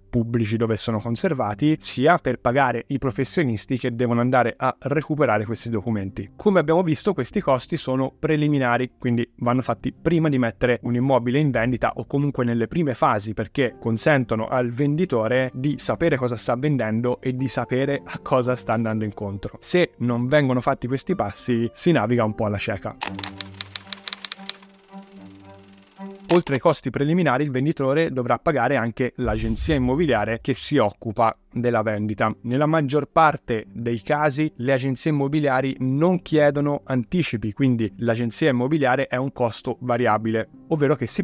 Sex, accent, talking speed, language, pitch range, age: male, native, 150 wpm, Italian, 115-145 Hz, 20-39